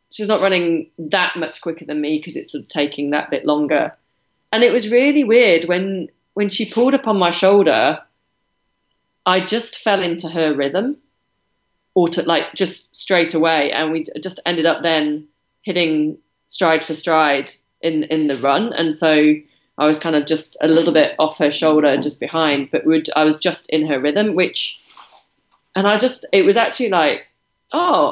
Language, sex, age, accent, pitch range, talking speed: English, female, 30-49, British, 155-190 Hz, 185 wpm